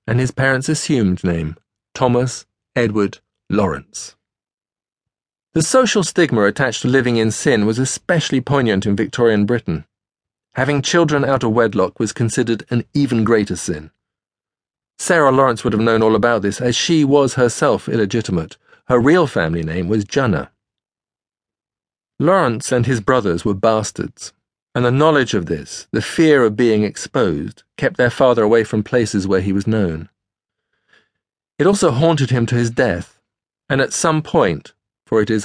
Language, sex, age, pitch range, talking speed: English, male, 40-59, 105-130 Hz, 155 wpm